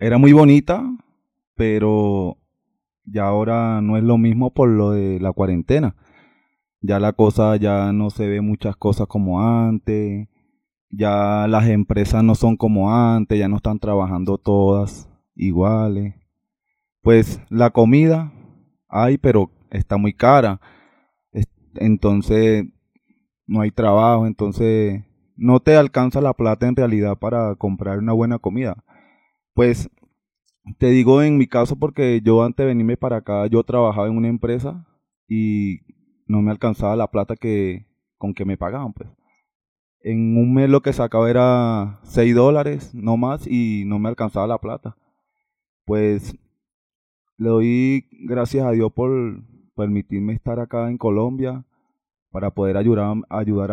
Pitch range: 100-120 Hz